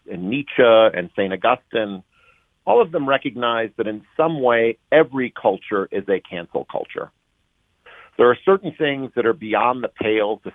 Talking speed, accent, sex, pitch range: 165 wpm, American, male, 105-145 Hz